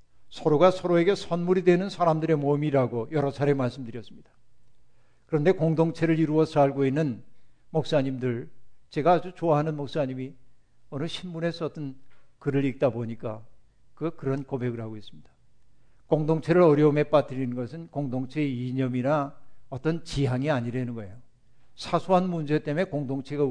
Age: 60-79